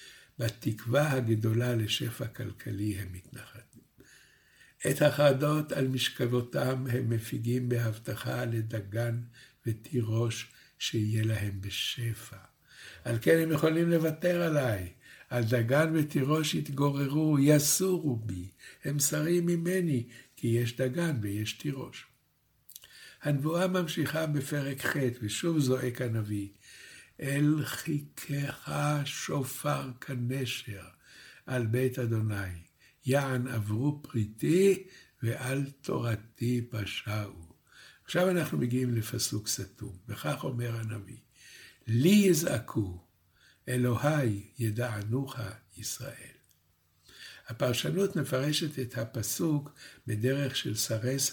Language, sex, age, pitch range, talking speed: Hebrew, male, 60-79, 110-145 Hz, 90 wpm